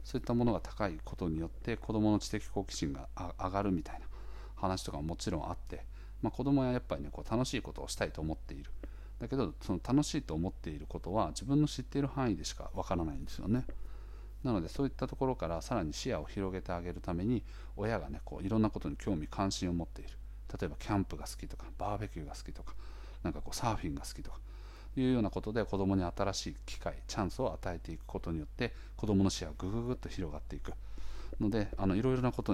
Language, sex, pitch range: Japanese, male, 85-110 Hz